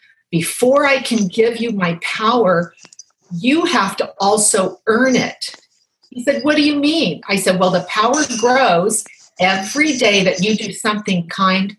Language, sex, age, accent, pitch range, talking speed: English, female, 40-59, American, 180-240 Hz, 165 wpm